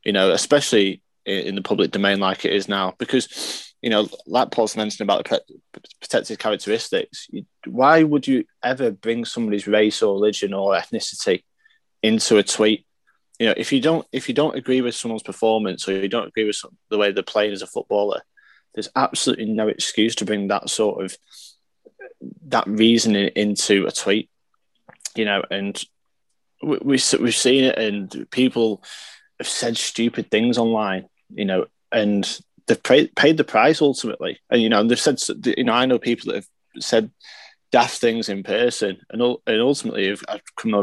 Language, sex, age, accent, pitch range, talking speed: English, male, 20-39, British, 105-130 Hz, 180 wpm